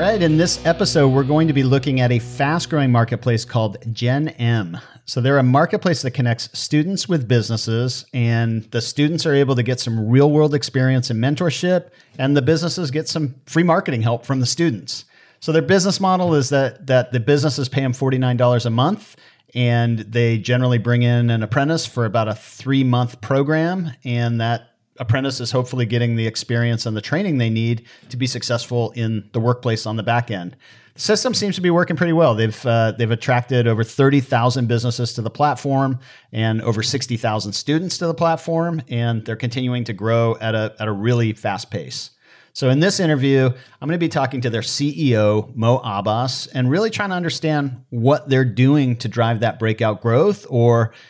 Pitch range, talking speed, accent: 115-145 Hz, 190 wpm, American